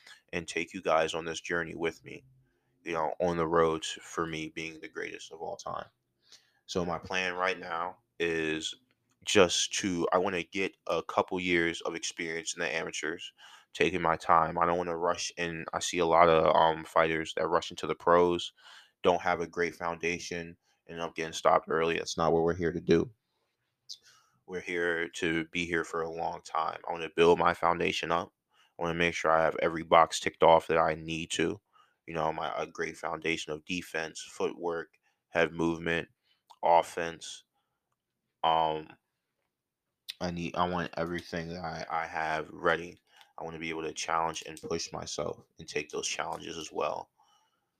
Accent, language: American, English